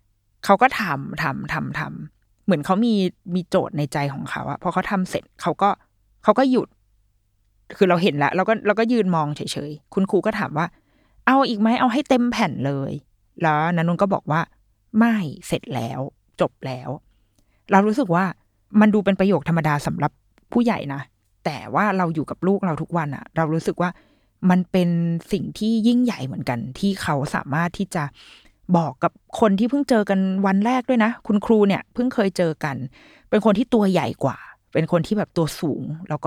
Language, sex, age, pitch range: Thai, female, 20-39, 150-215 Hz